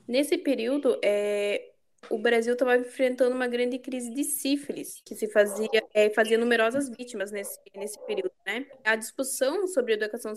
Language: Portuguese